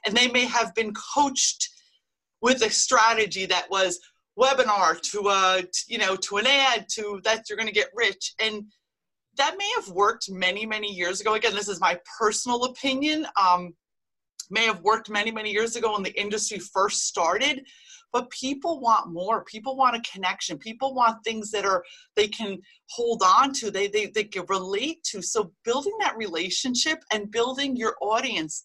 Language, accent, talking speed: English, American, 180 wpm